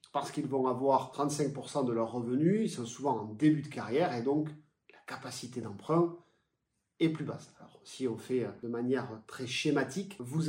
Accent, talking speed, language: French, 185 wpm, French